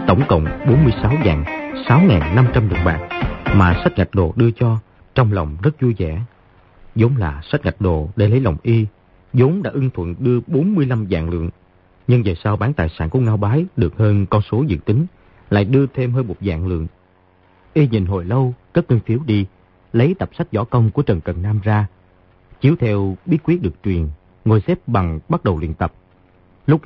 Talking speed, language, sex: 205 wpm, Vietnamese, male